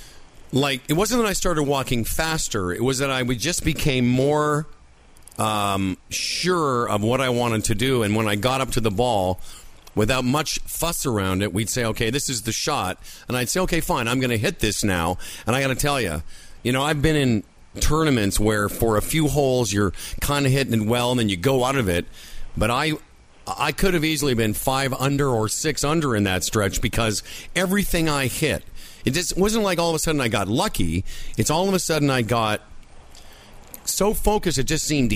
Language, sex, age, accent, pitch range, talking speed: English, male, 50-69, American, 110-155 Hz, 215 wpm